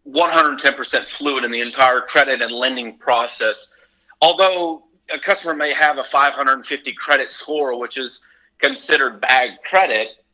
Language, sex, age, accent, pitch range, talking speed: English, male, 40-59, American, 125-165 Hz, 135 wpm